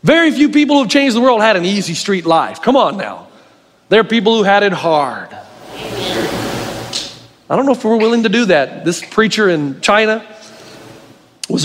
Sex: male